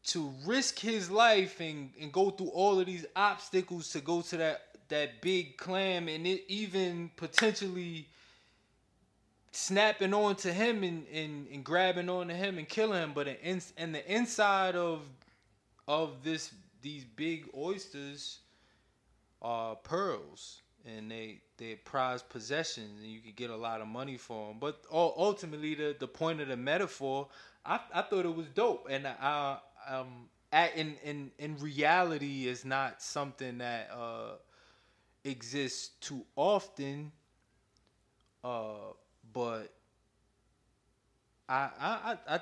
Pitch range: 115-165 Hz